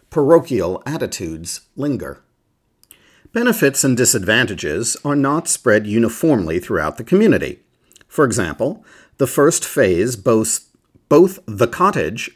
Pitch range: 115-165 Hz